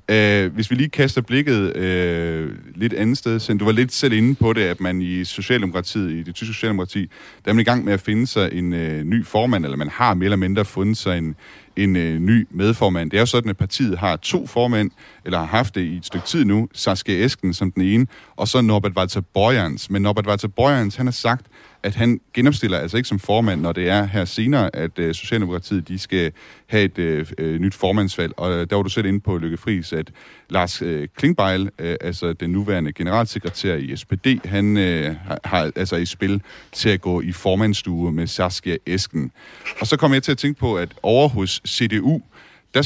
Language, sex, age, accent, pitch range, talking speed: Danish, male, 30-49, native, 90-110 Hz, 225 wpm